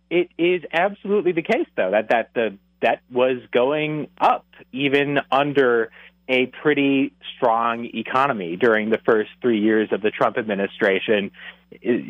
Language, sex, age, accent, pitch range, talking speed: English, male, 30-49, American, 105-150 Hz, 145 wpm